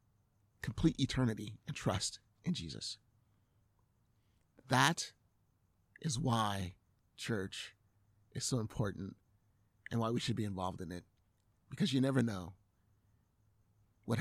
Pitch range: 100-130 Hz